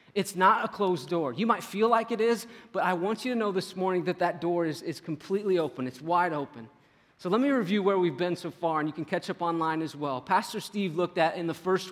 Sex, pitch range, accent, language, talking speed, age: male, 175-220 Hz, American, English, 265 wpm, 30-49